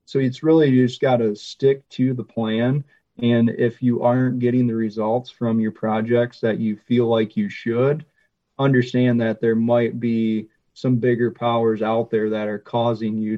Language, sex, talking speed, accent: English, male, 185 wpm, American